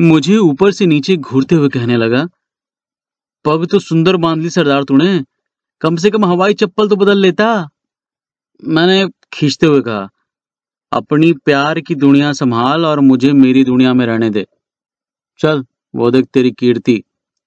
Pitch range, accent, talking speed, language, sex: 140-205 Hz, native, 145 wpm, Hindi, male